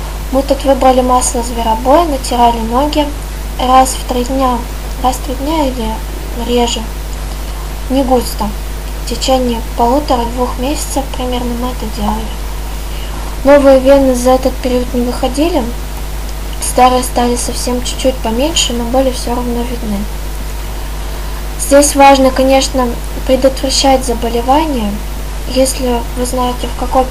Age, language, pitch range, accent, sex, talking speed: 20-39, Russian, 245-275 Hz, native, female, 120 wpm